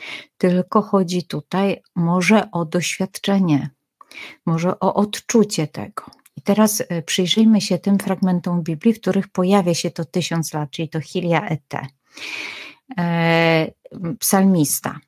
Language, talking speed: Polish, 115 wpm